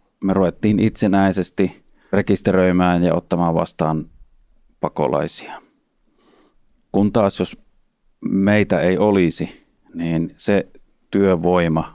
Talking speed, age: 85 wpm, 30-49